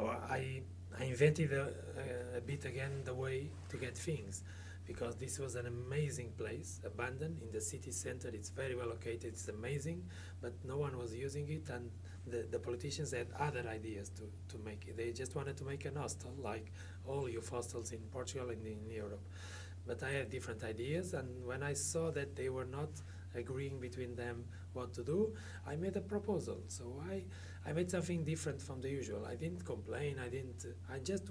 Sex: male